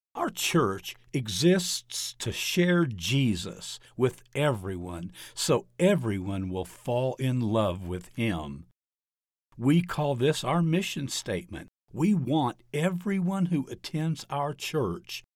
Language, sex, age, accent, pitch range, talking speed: English, male, 60-79, American, 110-175 Hz, 115 wpm